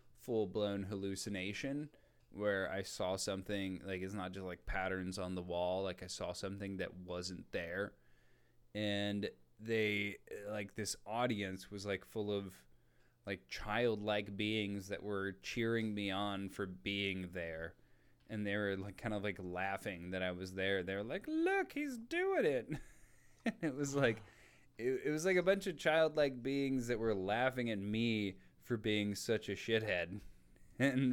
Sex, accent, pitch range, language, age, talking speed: male, American, 95-115 Hz, English, 20-39, 165 wpm